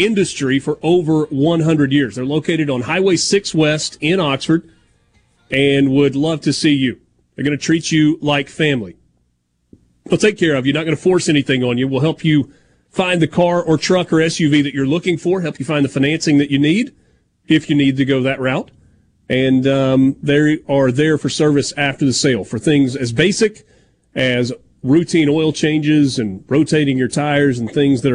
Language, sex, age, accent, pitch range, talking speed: English, male, 30-49, American, 125-160 Hz, 195 wpm